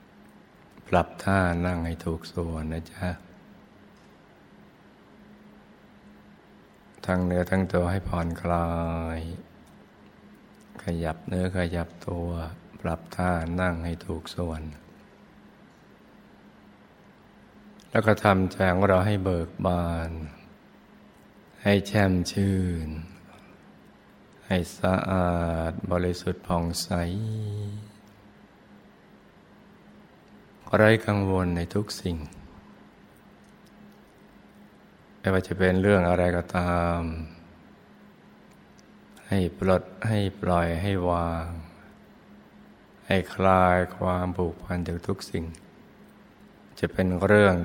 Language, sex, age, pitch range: Thai, male, 60-79, 85-95 Hz